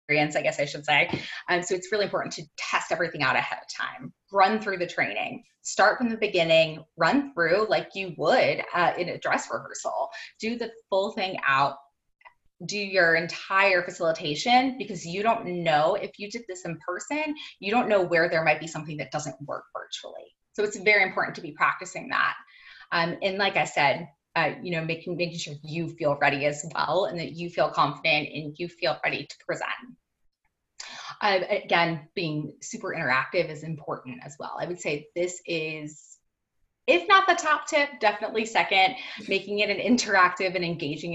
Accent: American